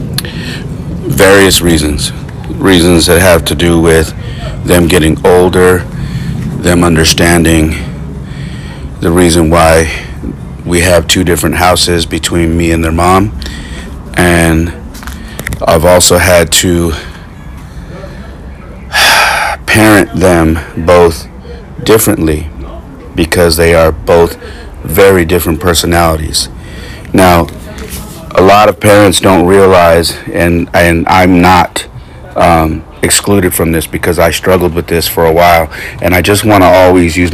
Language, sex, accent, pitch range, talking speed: English, male, American, 80-90 Hz, 115 wpm